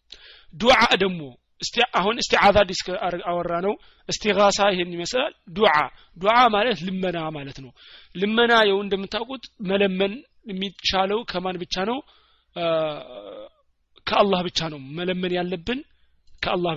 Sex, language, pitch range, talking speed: male, Amharic, 165-195 Hz, 100 wpm